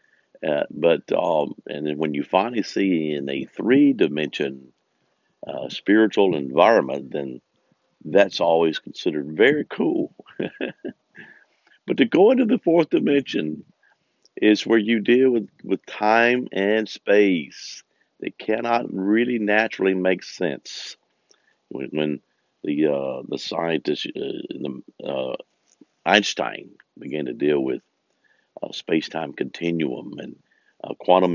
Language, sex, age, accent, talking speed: English, male, 50-69, American, 125 wpm